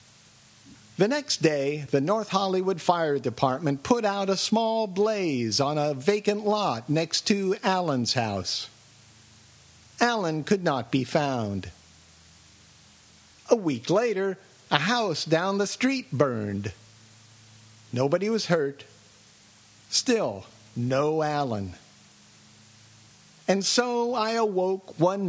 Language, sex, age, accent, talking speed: English, male, 50-69, American, 110 wpm